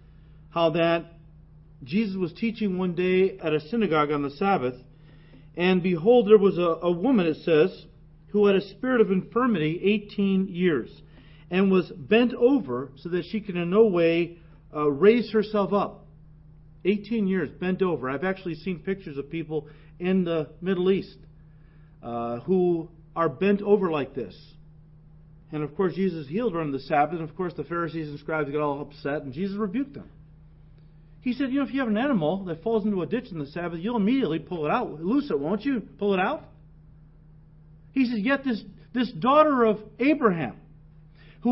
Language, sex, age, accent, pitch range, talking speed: English, male, 40-59, American, 155-210 Hz, 185 wpm